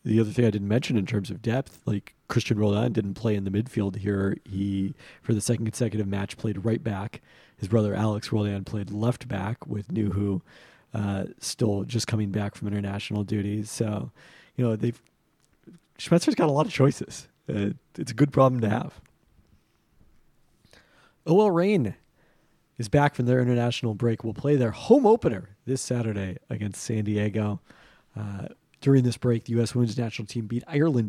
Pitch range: 105-125 Hz